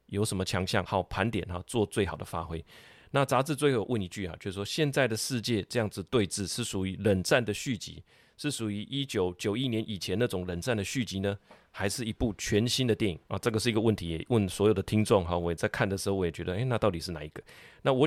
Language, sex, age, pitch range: Chinese, male, 30-49, 100-125 Hz